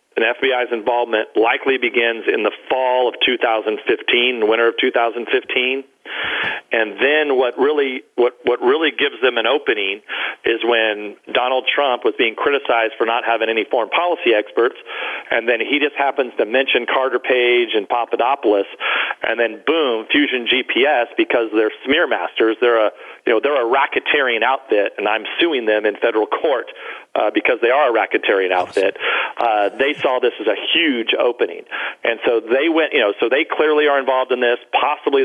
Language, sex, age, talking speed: English, male, 40-59, 175 wpm